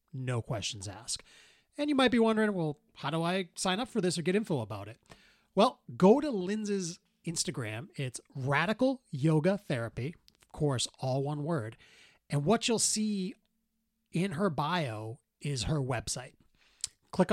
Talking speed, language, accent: 160 wpm, English, American